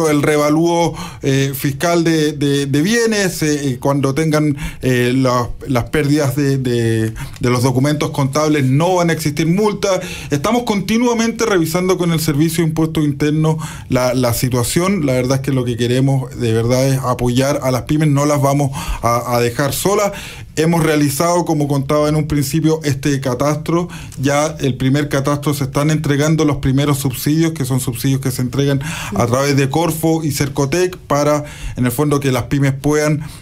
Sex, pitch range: male, 130-160 Hz